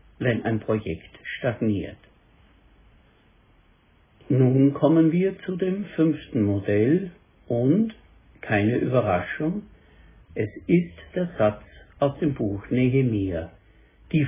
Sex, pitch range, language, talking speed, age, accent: male, 110-150 Hz, German, 95 wpm, 60-79, German